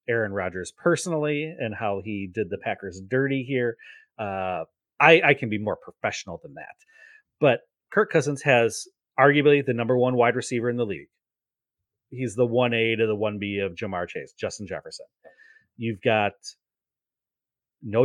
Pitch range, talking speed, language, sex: 105-135 Hz, 165 wpm, English, male